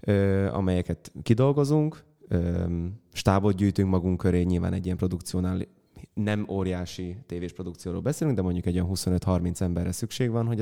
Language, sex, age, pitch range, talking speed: Hungarian, male, 20-39, 90-110 Hz, 135 wpm